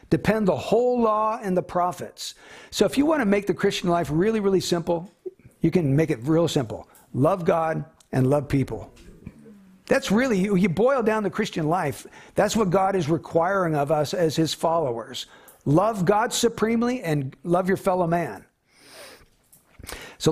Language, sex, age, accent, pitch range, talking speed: English, male, 60-79, American, 160-200 Hz, 170 wpm